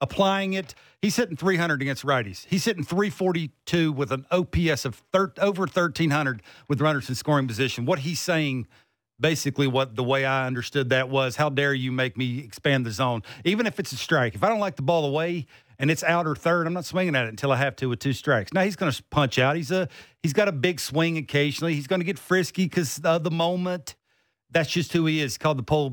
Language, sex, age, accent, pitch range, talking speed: English, male, 50-69, American, 135-180 Hz, 230 wpm